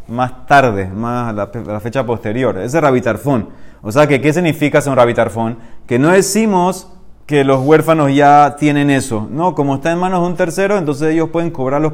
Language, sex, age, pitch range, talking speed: Spanish, male, 30-49, 115-155 Hz, 185 wpm